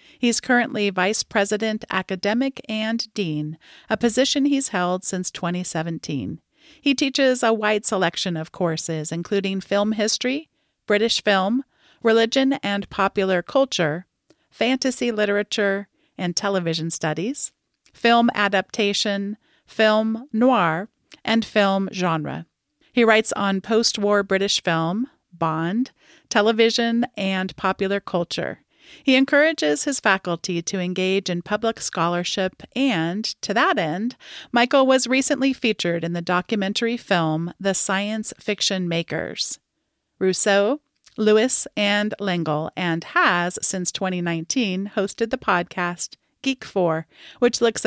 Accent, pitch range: American, 180-235 Hz